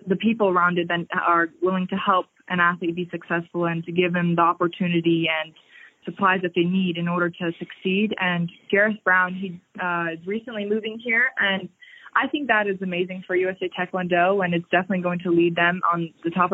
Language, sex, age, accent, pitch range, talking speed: English, female, 20-39, American, 170-185 Hz, 200 wpm